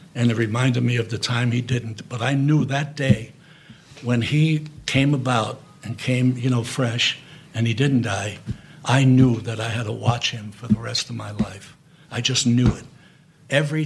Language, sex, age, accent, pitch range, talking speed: English, male, 70-89, American, 120-145 Hz, 200 wpm